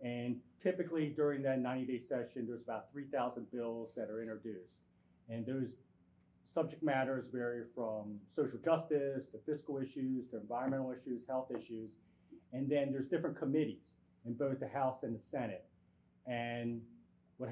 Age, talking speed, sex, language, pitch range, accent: 30-49, 145 wpm, male, English, 120-155 Hz, American